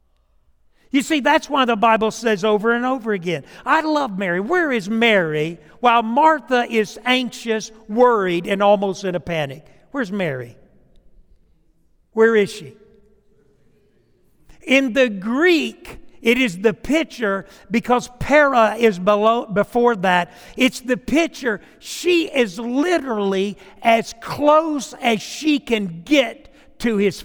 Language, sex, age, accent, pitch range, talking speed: English, male, 60-79, American, 160-235 Hz, 130 wpm